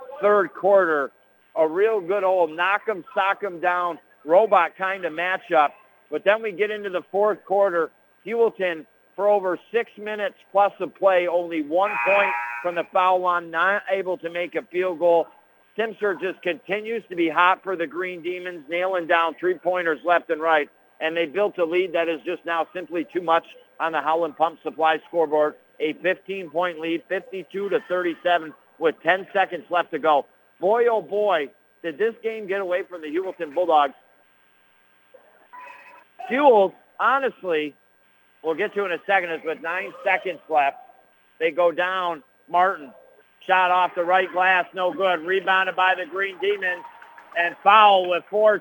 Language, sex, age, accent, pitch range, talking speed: English, male, 60-79, American, 170-200 Hz, 170 wpm